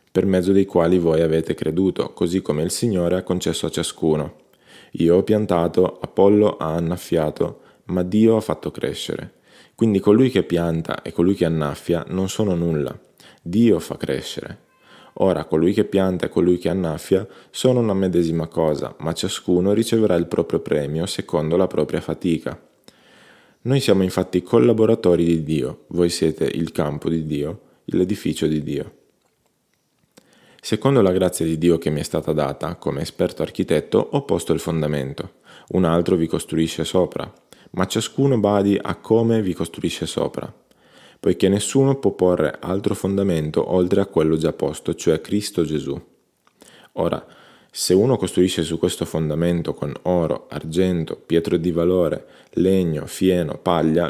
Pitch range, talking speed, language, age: 80-95 Hz, 150 wpm, Italian, 20-39